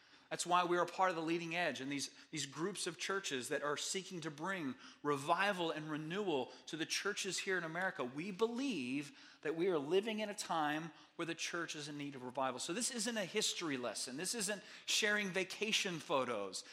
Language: English